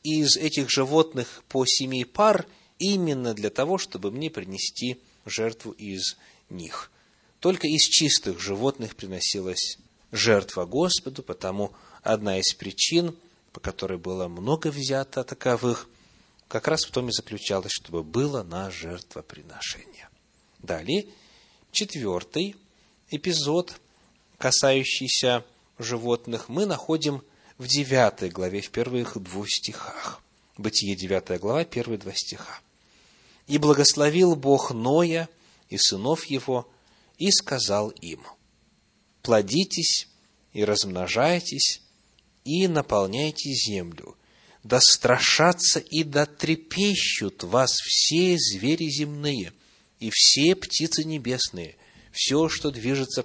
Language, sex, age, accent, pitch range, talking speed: Russian, male, 30-49, native, 110-160 Hz, 105 wpm